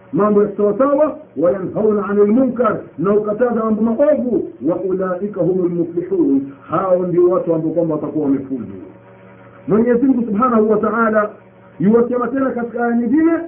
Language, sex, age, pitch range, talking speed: Swahili, male, 50-69, 175-260 Hz, 110 wpm